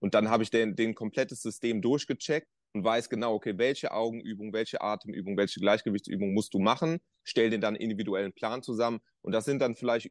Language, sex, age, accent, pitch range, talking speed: German, male, 30-49, German, 105-130 Hz, 200 wpm